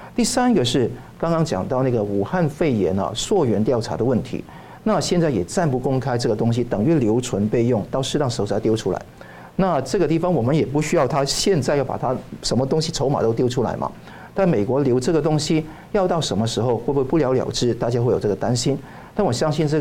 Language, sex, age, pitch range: Chinese, male, 50-69, 115-155 Hz